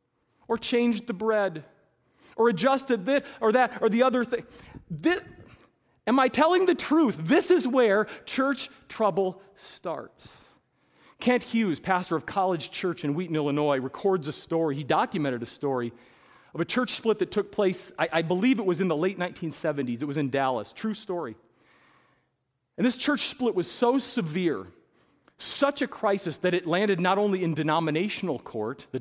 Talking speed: 170 wpm